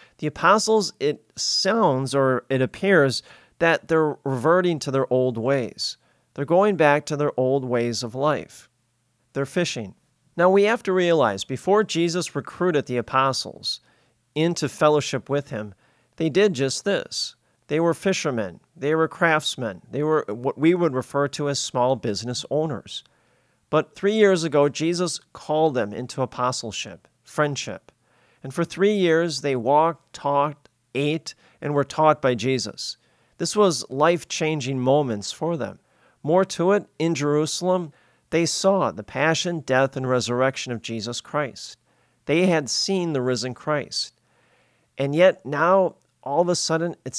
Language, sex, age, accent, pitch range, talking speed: English, male, 40-59, American, 125-165 Hz, 150 wpm